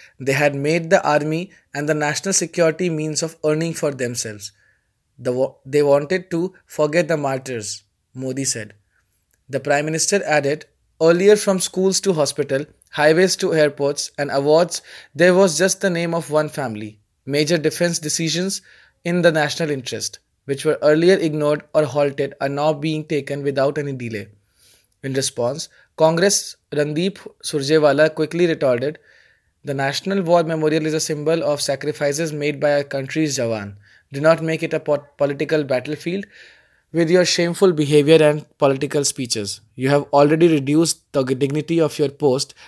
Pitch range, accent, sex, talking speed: 140-165 Hz, Indian, male, 155 wpm